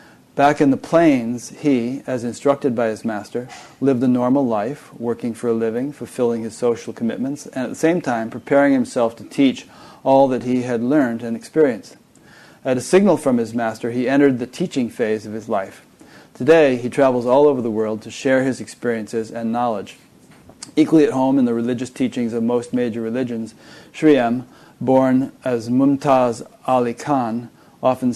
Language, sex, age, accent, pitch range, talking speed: English, male, 30-49, American, 115-135 Hz, 180 wpm